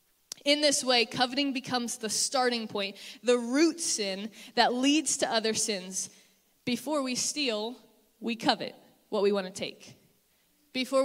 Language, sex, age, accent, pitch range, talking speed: English, female, 20-39, American, 215-260 Hz, 140 wpm